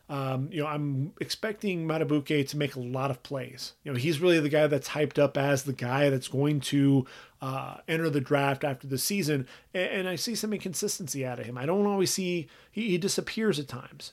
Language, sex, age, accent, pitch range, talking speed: English, male, 30-49, American, 135-170 Hz, 210 wpm